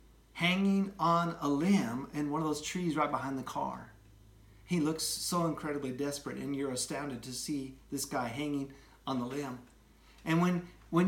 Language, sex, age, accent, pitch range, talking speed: English, male, 50-69, American, 145-195 Hz, 175 wpm